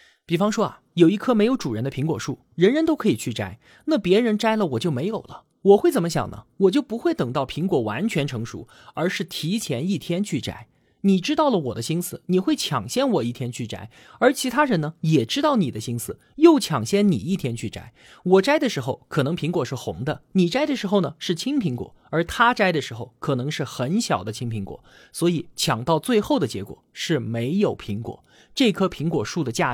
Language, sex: Chinese, male